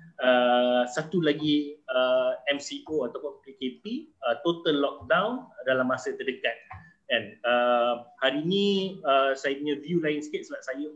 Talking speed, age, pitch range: 135 wpm, 30-49, 130-170 Hz